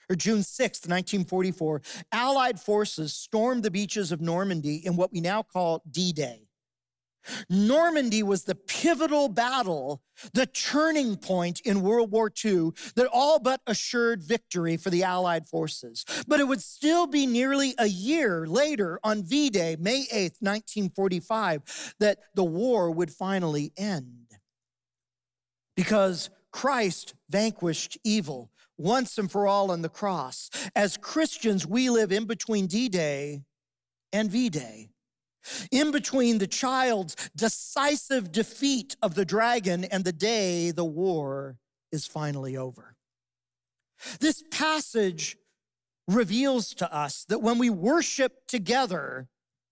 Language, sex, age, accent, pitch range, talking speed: English, male, 40-59, American, 155-235 Hz, 125 wpm